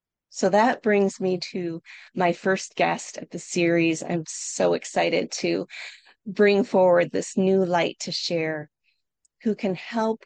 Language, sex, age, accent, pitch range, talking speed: English, female, 30-49, American, 170-210 Hz, 145 wpm